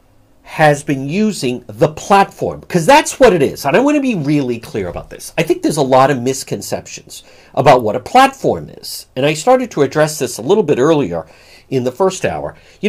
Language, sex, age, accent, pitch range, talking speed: English, male, 50-69, American, 130-205 Hz, 215 wpm